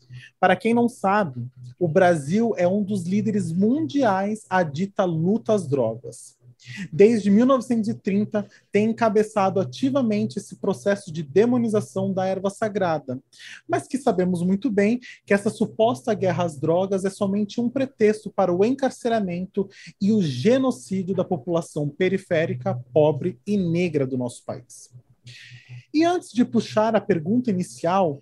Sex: male